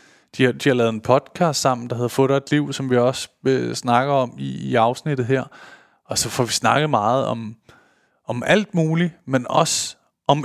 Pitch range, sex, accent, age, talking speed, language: 120-150 Hz, male, native, 20-39, 195 wpm, Danish